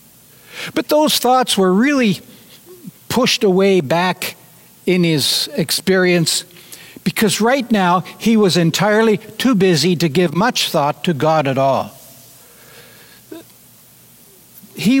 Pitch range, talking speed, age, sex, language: 180-225 Hz, 110 wpm, 60-79, male, English